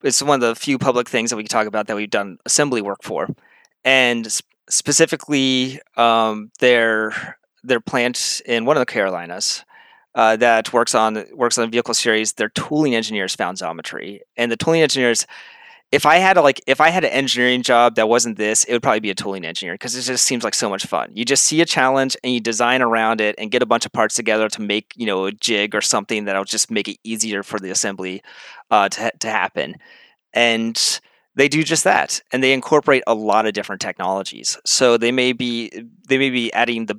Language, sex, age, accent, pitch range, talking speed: English, male, 30-49, American, 110-135 Hz, 220 wpm